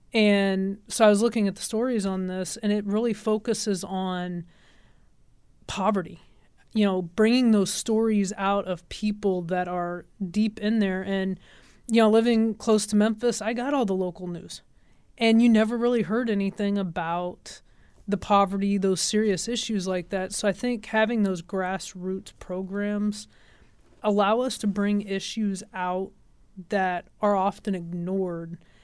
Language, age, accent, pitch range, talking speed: English, 20-39, American, 180-210 Hz, 150 wpm